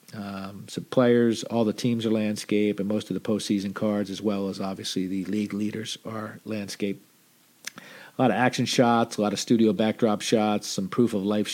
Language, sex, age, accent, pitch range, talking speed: English, male, 40-59, American, 95-110 Hz, 185 wpm